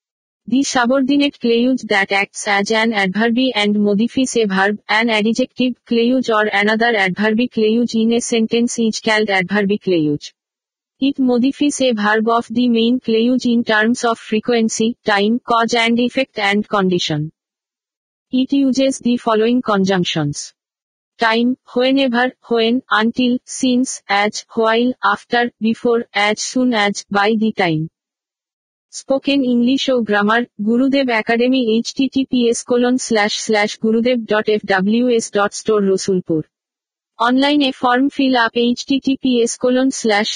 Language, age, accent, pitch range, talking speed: Bengali, 50-69, native, 210-250 Hz, 125 wpm